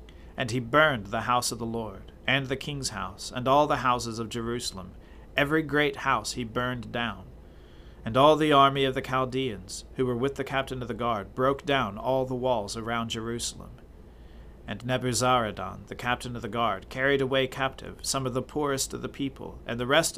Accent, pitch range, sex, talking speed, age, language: American, 105-135 Hz, male, 195 wpm, 40-59, English